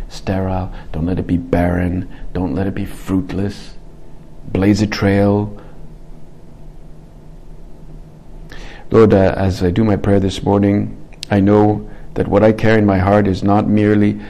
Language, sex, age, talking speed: English, male, 50-69, 145 wpm